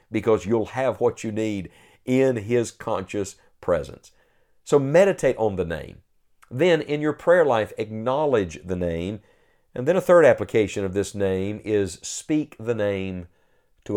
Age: 50-69